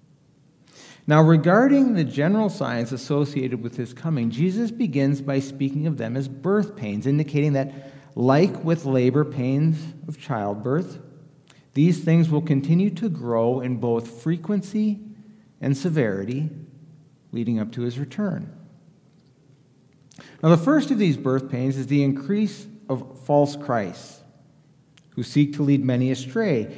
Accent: American